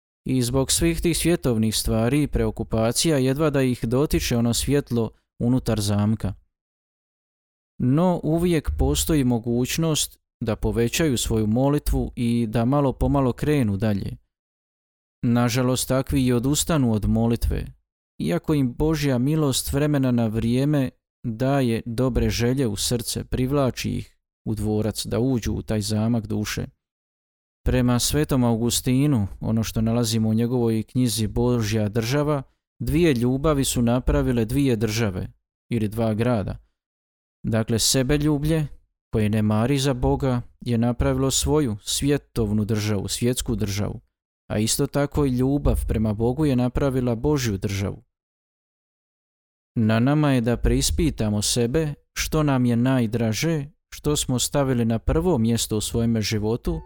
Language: Croatian